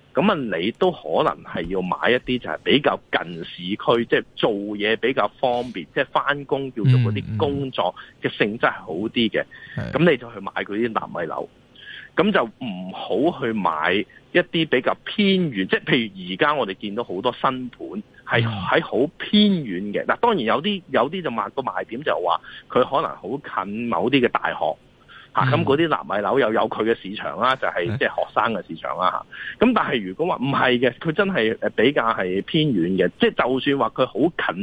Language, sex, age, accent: Chinese, male, 30-49, native